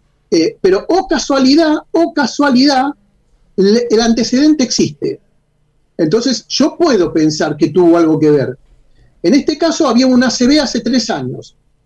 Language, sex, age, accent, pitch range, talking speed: Spanish, male, 40-59, Argentinian, 190-290 Hz, 150 wpm